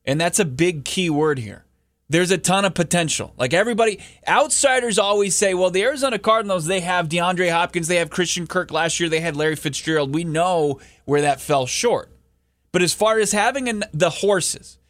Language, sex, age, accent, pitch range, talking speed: English, male, 20-39, American, 130-175 Hz, 195 wpm